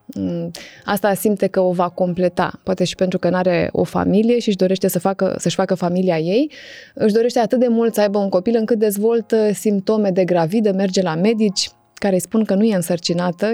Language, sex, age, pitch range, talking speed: Romanian, female, 20-39, 180-220 Hz, 210 wpm